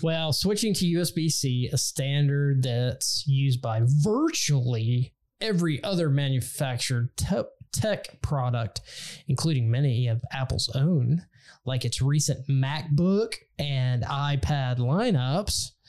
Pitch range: 125-145 Hz